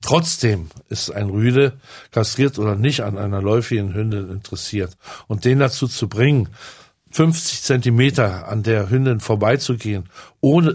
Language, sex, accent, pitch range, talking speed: German, male, German, 110-145 Hz, 135 wpm